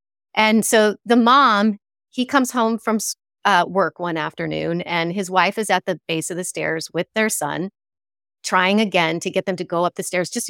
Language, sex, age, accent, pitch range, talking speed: English, female, 30-49, American, 180-235 Hz, 205 wpm